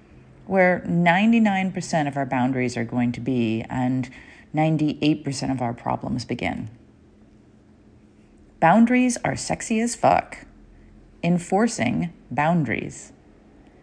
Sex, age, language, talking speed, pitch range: female, 40-59, English, 95 wpm, 130-180 Hz